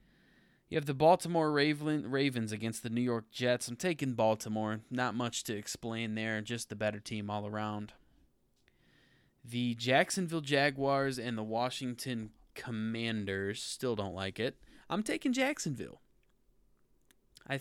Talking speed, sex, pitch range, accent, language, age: 135 wpm, male, 110-130 Hz, American, English, 20-39